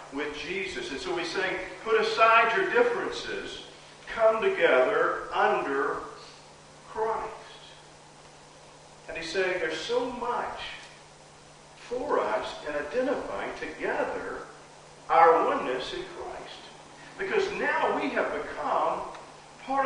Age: 50-69